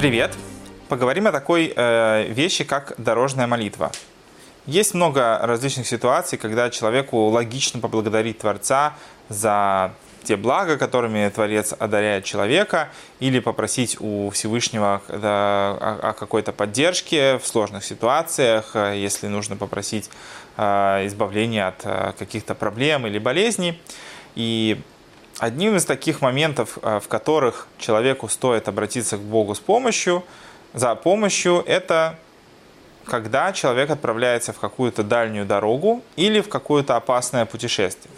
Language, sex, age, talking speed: Russian, male, 20-39, 115 wpm